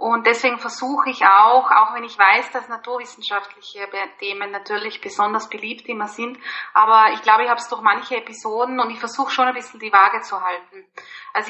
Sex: female